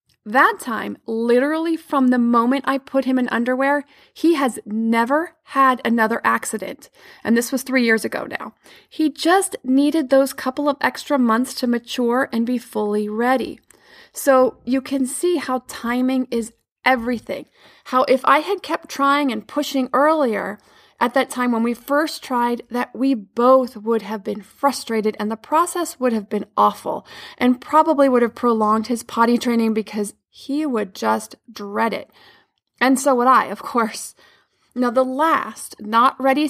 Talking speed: 165 wpm